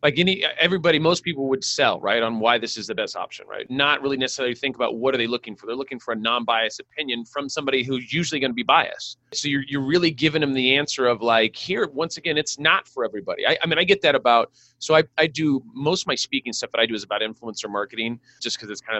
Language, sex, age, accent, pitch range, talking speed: English, male, 30-49, American, 120-160 Hz, 265 wpm